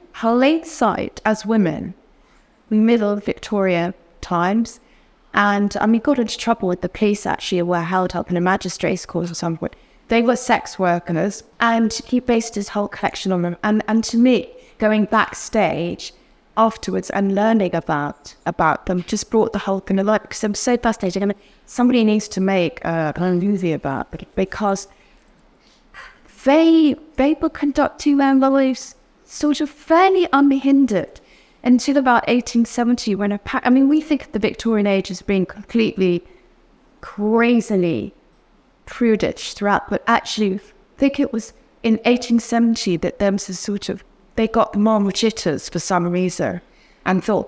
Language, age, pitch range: English, 20-39, 180-235 Hz